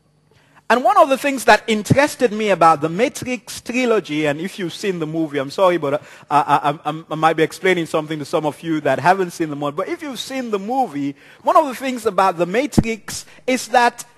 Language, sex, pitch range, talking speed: English, male, 175-255 Hz, 225 wpm